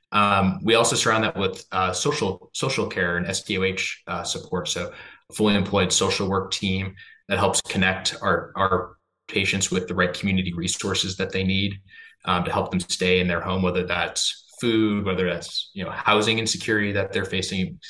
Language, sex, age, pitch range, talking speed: English, male, 20-39, 90-100 Hz, 185 wpm